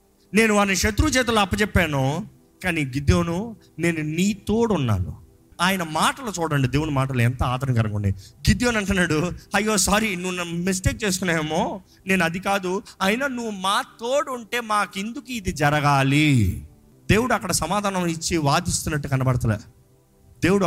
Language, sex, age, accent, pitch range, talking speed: Telugu, male, 30-49, native, 135-205 Hz, 130 wpm